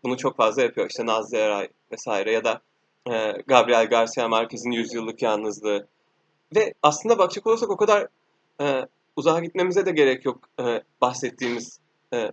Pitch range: 125-165 Hz